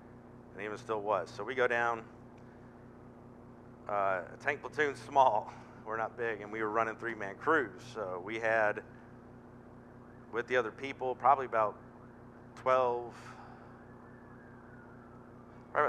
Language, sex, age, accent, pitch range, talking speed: English, male, 50-69, American, 105-120 Hz, 125 wpm